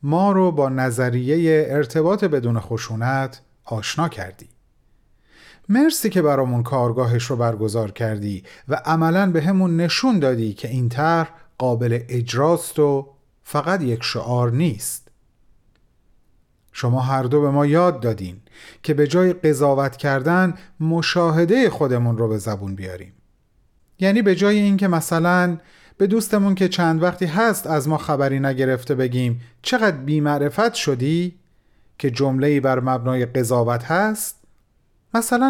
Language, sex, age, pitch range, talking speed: Persian, male, 40-59, 125-175 Hz, 130 wpm